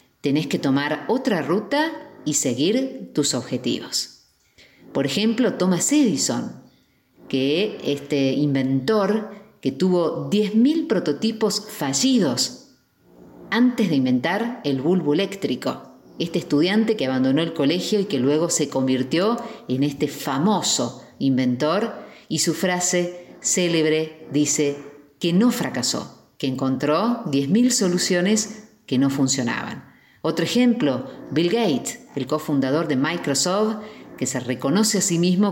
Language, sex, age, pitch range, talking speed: Spanish, female, 40-59, 140-205 Hz, 120 wpm